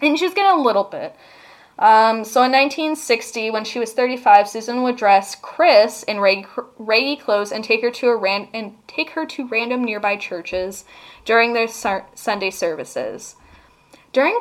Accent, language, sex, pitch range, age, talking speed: American, English, female, 200-255 Hz, 10-29, 175 wpm